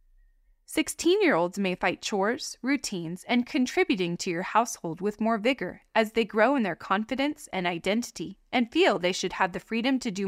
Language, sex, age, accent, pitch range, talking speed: English, female, 20-39, American, 190-260 Hz, 175 wpm